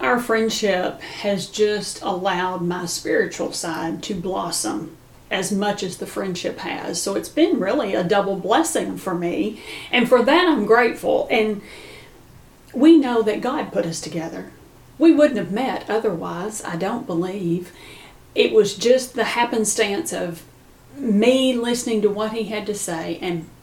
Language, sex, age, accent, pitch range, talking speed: English, female, 40-59, American, 175-225 Hz, 155 wpm